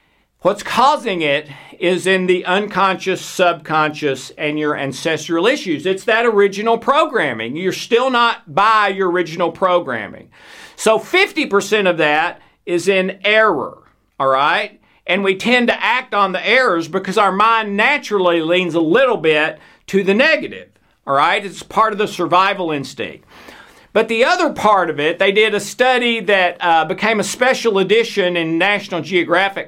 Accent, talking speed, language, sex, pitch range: American, 160 wpm, English, male, 170-220 Hz